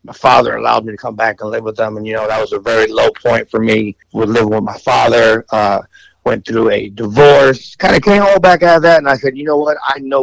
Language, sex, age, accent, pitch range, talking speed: English, male, 50-69, American, 115-140 Hz, 280 wpm